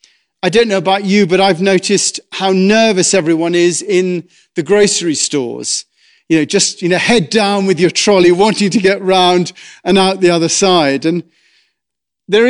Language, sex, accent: English, male, British